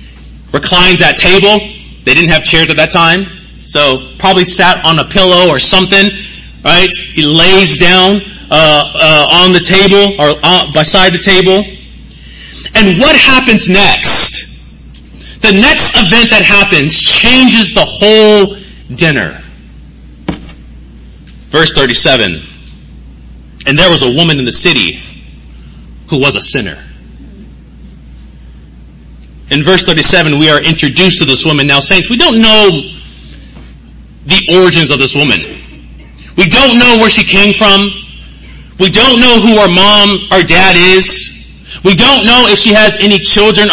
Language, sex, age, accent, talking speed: English, male, 30-49, American, 140 wpm